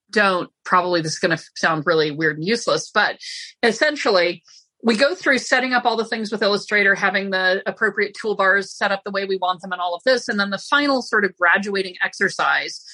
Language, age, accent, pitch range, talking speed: English, 40-59, American, 185-235 Hz, 215 wpm